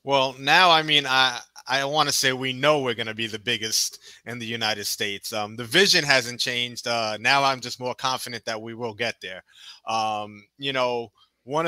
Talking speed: 205 wpm